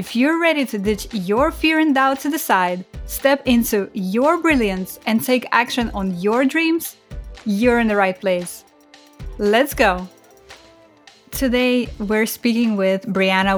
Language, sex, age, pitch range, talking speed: English, female, 20-39, 195-250 Hz, 150 wpm